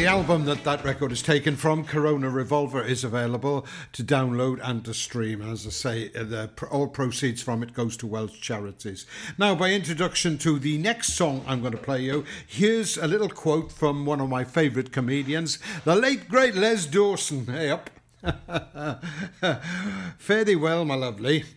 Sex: male